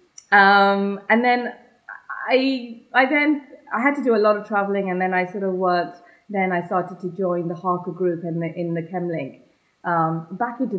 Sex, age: female, 30-49